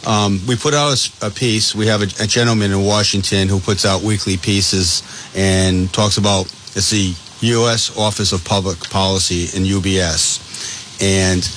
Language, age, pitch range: English, 40-59, 95-110 Hz